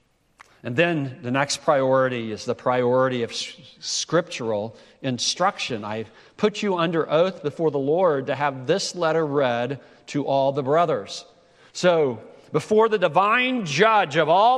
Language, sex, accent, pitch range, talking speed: English, male, American, 130-195 Hz, 145 wpm